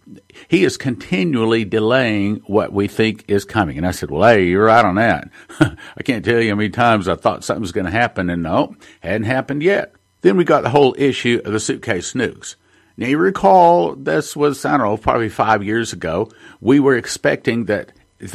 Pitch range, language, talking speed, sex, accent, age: 100-120 Hz, English, 205 wpm, male, American, 50-69